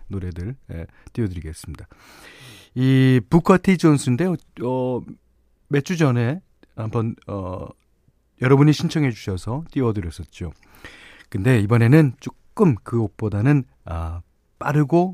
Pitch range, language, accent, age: 105-155 Hz, Korean, native, 40-59